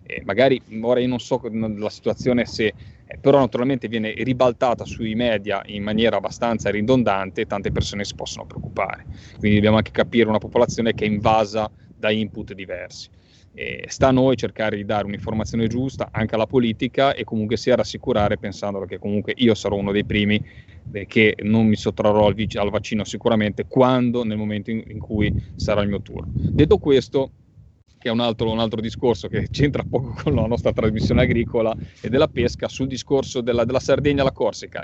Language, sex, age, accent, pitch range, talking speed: Italian, male, 30-49, native, 105-120 Hz, 185 wpm